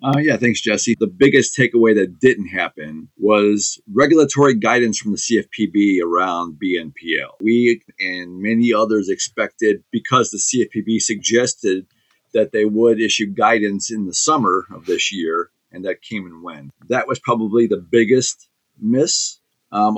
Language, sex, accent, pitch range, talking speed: English, male, American, 105-120 Hz, 150 wpm